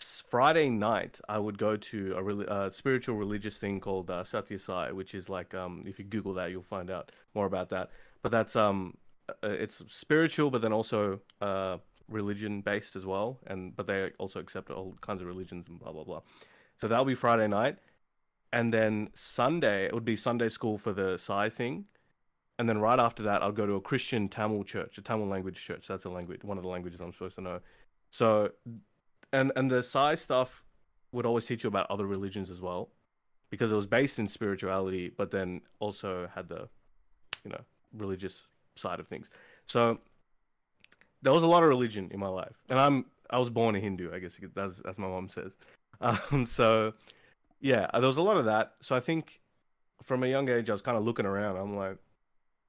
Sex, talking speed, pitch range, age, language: male, 200 wpm, 95-115 Hz, 30-49, English